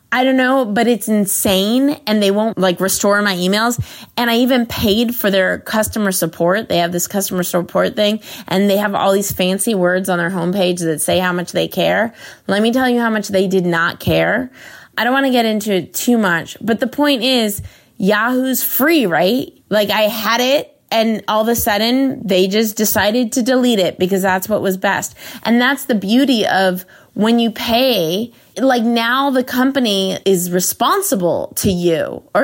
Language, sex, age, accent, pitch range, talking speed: English, female, 20-39, American, 180-235 Hz, 195 wpm